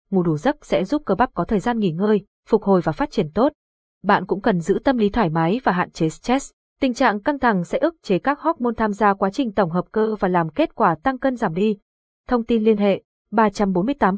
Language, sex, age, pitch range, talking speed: Vietnamese, female, 20-39, 195-245 Hz, 255 wpm